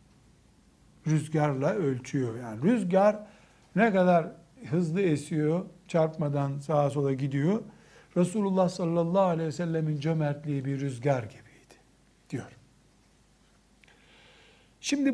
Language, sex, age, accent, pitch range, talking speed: Turkish, male, 60-79, native, 140-190 Hz, 90 wpm